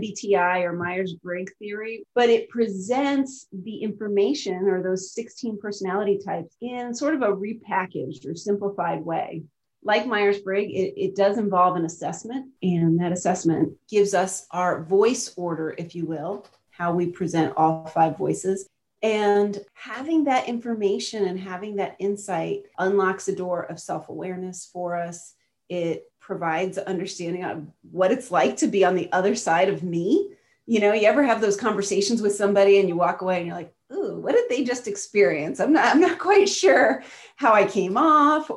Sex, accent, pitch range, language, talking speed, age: female, American, 180-220 Hz, English, 175 wpm, 30-49